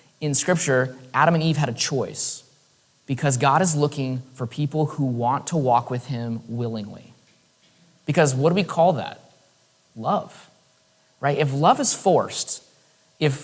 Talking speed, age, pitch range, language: 150 wpm, 30-49, 125-160 Hz, English